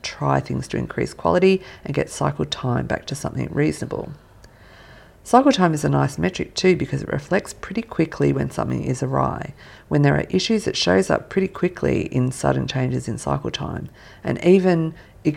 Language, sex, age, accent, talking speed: English, female, 50-69, Australian, 185 wpm